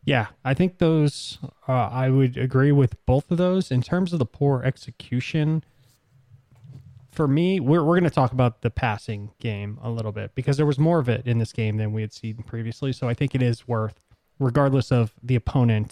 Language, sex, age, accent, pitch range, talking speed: English, male, 20-39, American, 115-140 Hz, 210 wpm